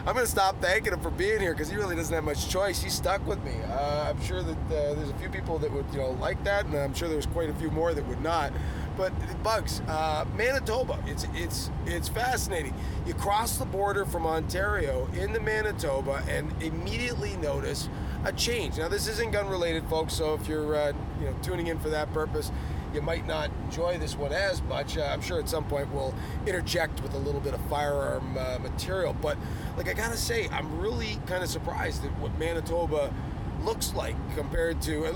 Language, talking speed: English, 210 wpm